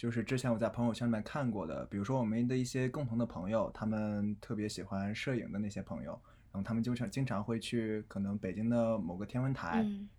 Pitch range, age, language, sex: 105-120 Hz, 20-39, Chinese, male